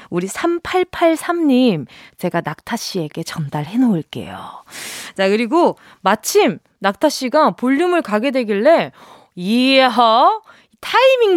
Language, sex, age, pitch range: Korean, female, 20-39, 200-305 Hz